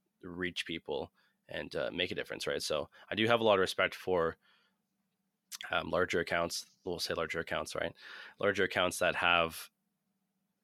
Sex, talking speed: male, 170 wpm